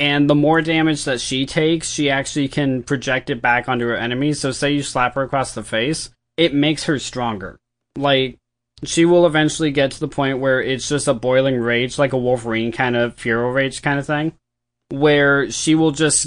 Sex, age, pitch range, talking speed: male, 20-39, 120-145 Hz, 205 wpm